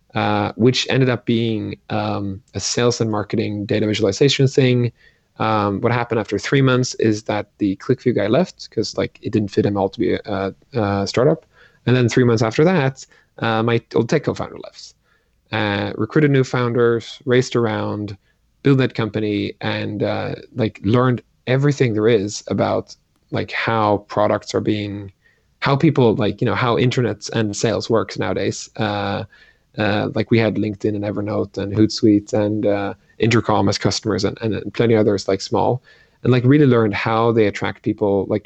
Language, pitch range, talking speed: English, 105-125 Hz, 175 wpm